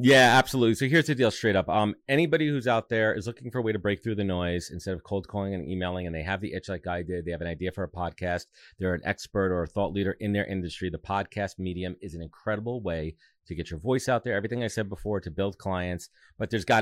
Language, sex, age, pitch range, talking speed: English, male, 30-49, 90-110 Hz, 275 wpm